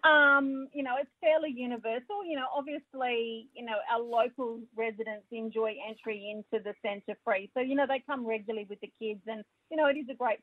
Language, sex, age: English, female, 40-59